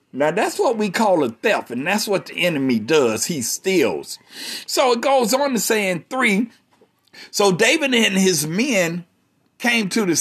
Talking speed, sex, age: 175 wpm, male, 60-79